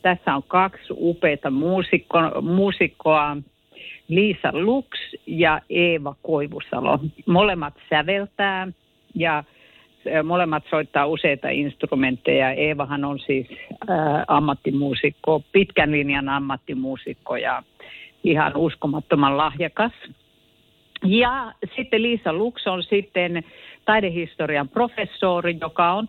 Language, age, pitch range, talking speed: Finnish, 50-69, 155-230 Hz, 85 wpm